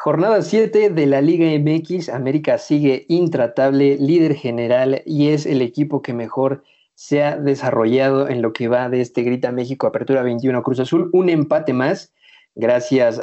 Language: Spanish